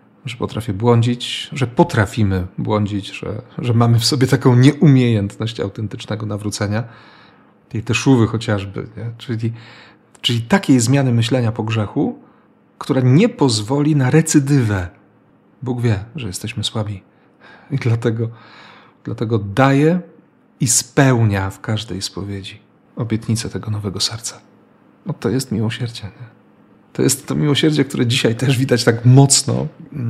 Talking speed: 130 wpm